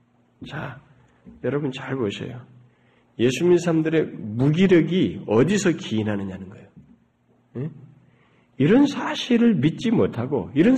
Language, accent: Korean, native